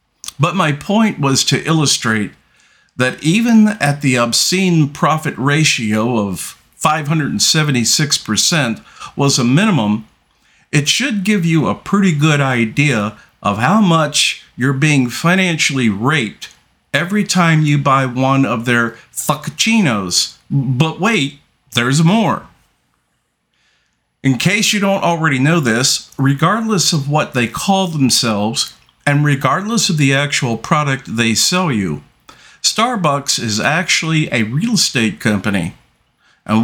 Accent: American